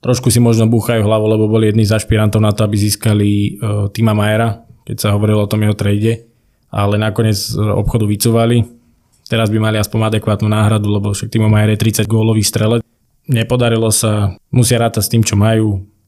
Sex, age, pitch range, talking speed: male, 20-39, 105-115 Hz, 185 wpm